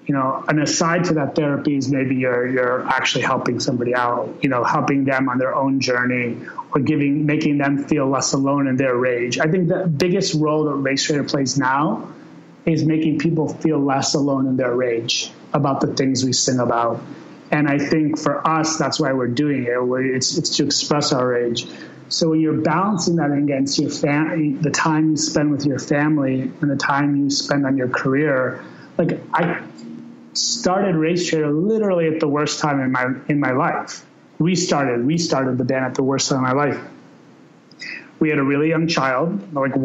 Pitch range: 135-155 Hz